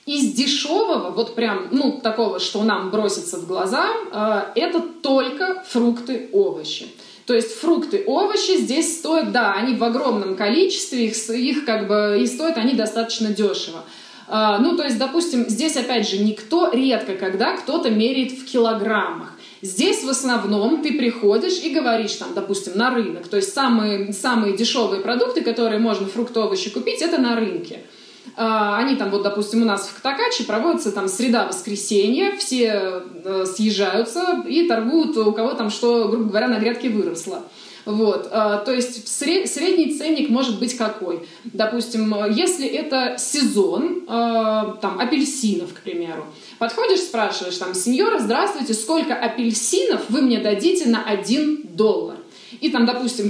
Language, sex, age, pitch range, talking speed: Russian, female, 20-39, 210-285 Hz, 145 wpm